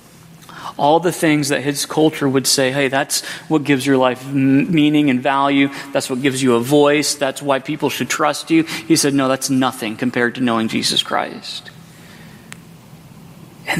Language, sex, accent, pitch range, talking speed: English, male, American, 140-175 Hz, 175 wpm